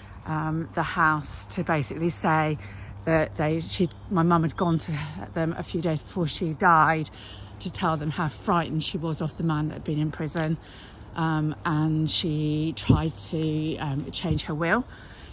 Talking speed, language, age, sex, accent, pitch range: 175 wpm, English, 40-59, female, British, 150-170 Hz